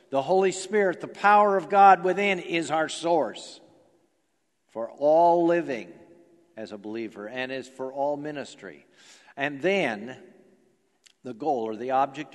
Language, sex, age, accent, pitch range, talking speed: English, male, 50-69, American, 135-200 Hz, 140 wpm